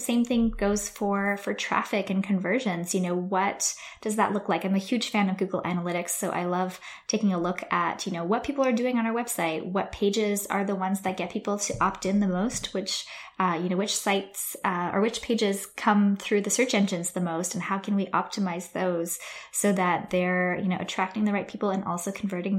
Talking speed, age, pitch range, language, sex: 230 wpm, 10-29, 185-235 Hz, English, female